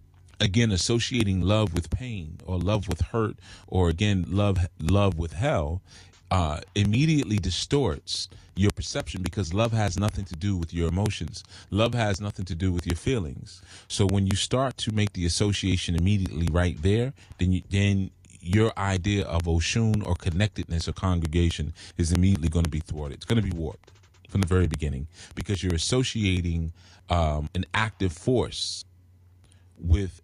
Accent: American